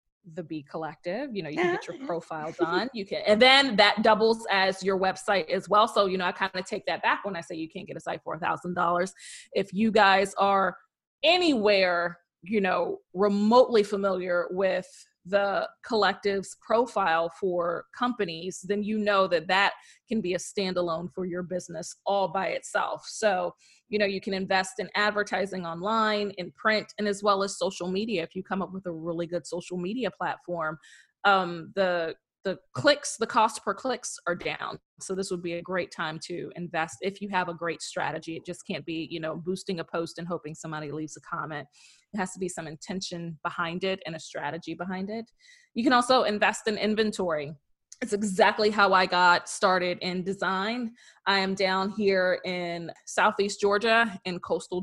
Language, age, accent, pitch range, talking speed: English, 20-39, American, 170-205 Hz, 190 wpm